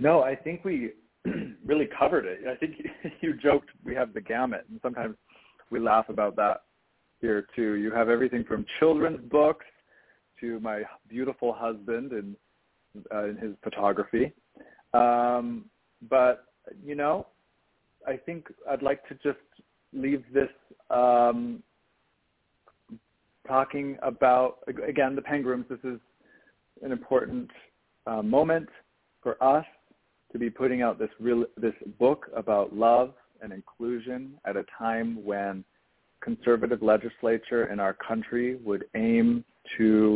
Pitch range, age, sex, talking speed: 110-135 Hz, 40-59, male, 130 wpm